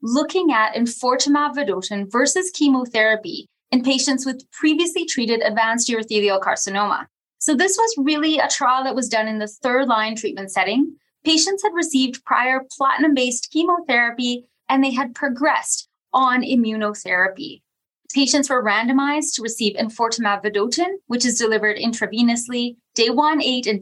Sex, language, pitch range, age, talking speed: female, English, 220-285 Hz, 20-39, 135 wpm